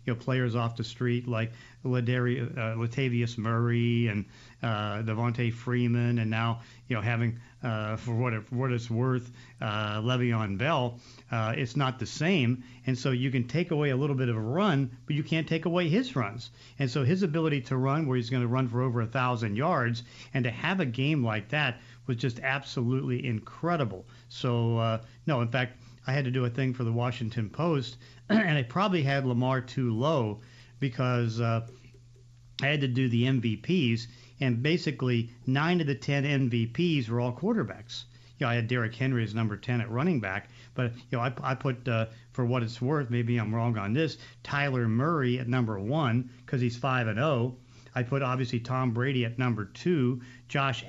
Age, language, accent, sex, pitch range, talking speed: 50-69, English, American, male, 120-135 Hz, 200 wpm